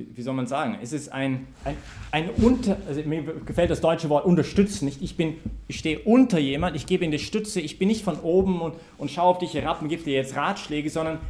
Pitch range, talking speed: 130-185 Hz, 245 wpm